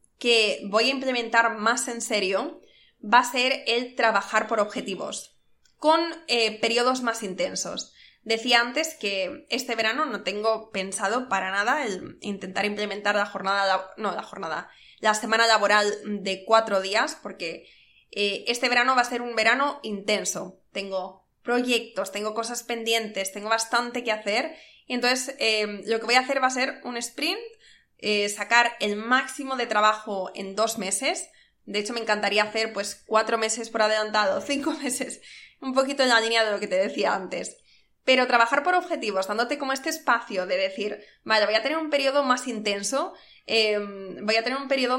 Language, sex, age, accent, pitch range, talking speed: Spanish, female, 20-39, Spanish, 205-250 Hz, 175 wpm